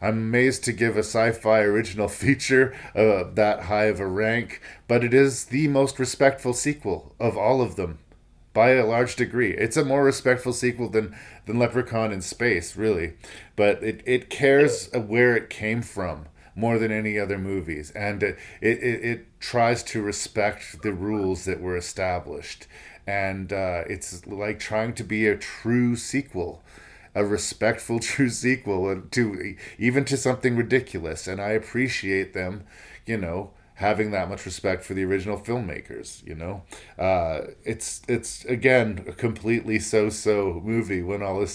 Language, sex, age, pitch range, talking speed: English, male, 40-59, 95-120 Hz, 165 wpm